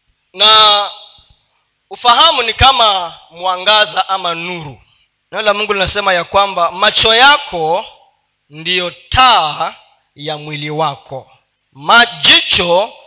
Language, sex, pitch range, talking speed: Swahili, male, 165-250 Hz, 90 wpm